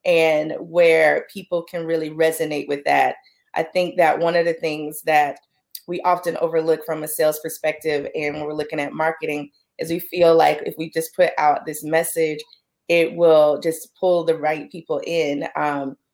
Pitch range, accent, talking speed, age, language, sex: 160-185 Hz, American, 180 wpm, 20-39, English, female